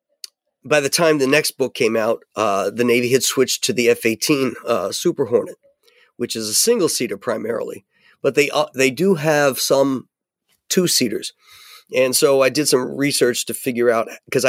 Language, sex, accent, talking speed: English, male, American, 180 wpm